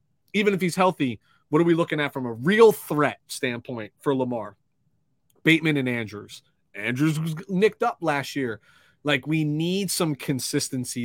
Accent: American